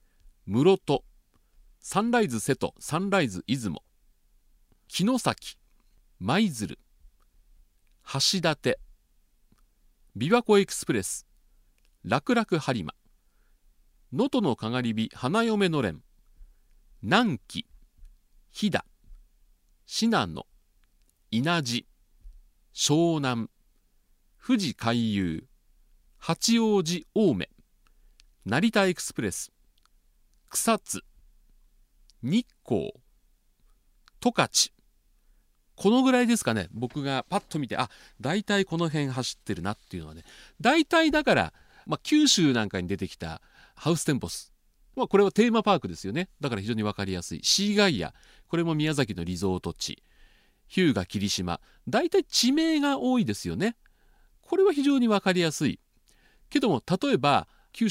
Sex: male